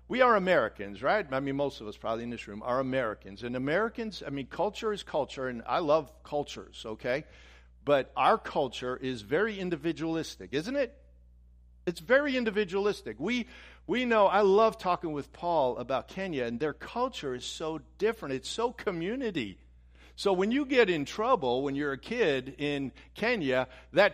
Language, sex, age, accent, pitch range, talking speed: English, male, 50-69, American, 140-205 Hz, 175 wpm